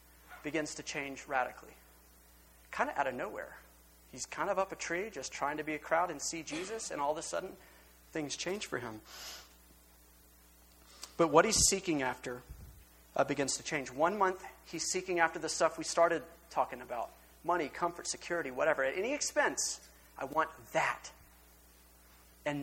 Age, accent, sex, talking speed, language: 30-49, American, male, 170 wpm, English